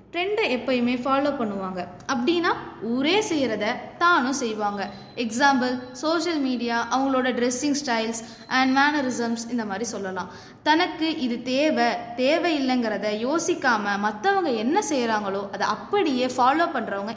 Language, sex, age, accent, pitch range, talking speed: Tamil, female, 20-39, native, 215-305 Hz, 110 wpm